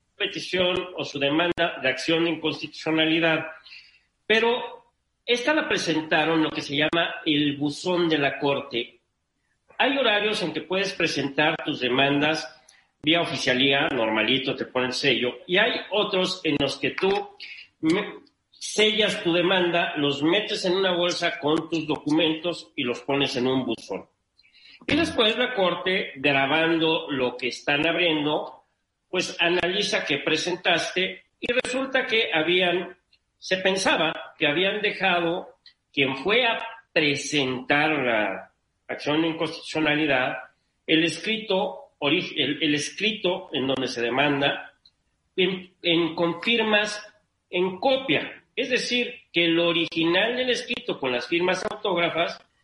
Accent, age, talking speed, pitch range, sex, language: Mexican, 40-59, 130 wpm, 145-190 Hz, male, Spanish